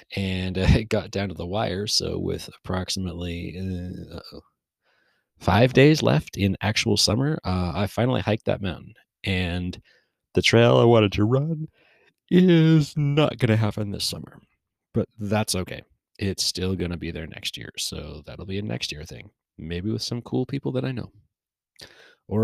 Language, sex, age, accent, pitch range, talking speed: English, male, 30-49, American, 90-115 Hz, 170 wpm